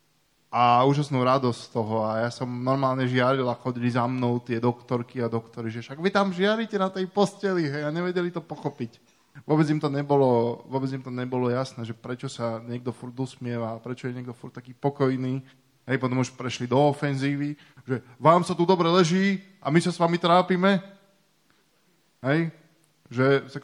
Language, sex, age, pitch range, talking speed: Slovak, male, 10-29, 120-140 Hz, 180 wpm